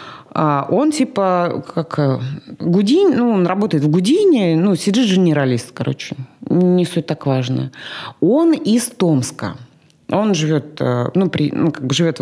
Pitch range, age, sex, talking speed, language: 140-200 Hz, 30-49, female, 135 wpm, Russian